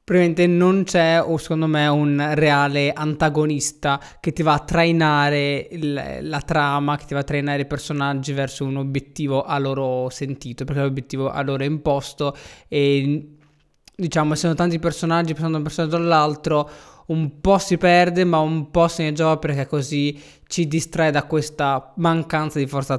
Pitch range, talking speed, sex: 135-155 Hz, 165 wpm, male